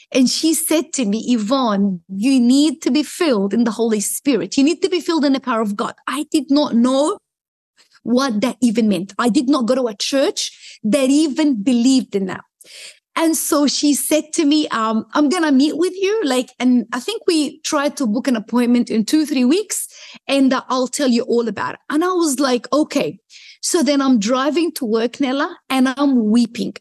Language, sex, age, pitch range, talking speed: English, female, 30-49, 250-320 Hz, 215 wpm